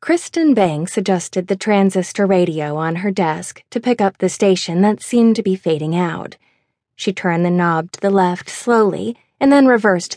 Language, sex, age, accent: English, female, 20-39, American